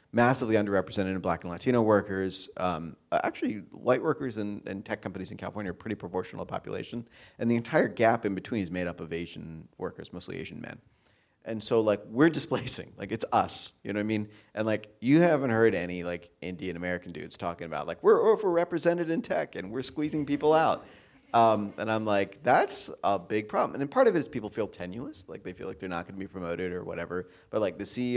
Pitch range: 95-120 Hz